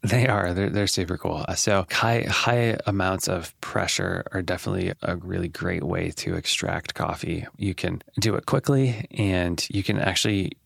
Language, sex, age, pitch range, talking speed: English, male, 20-39, 90-115 Hz, 170 wpm